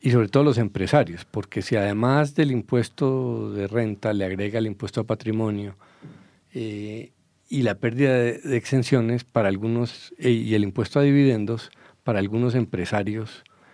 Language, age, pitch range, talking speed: English, 50-69, 105-135 Hz, 155 wpm